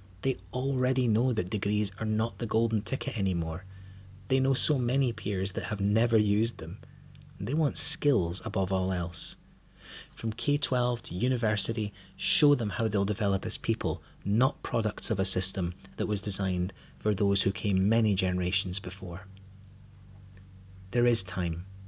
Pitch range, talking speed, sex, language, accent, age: 95-115 Hz, 155 wpm, male, English, British, 30-49